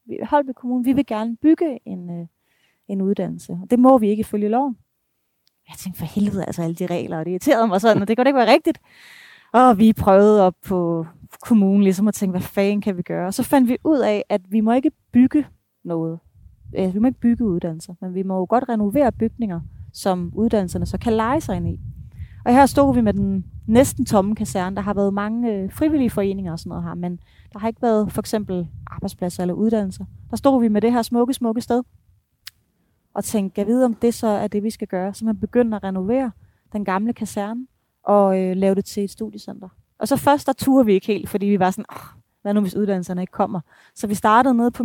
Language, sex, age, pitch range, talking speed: Danish, female, 30-49, 190-245 Hz, 230 wpm